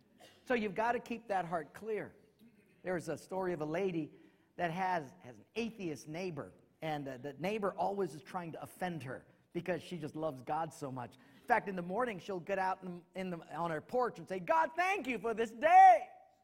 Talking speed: 210 wpm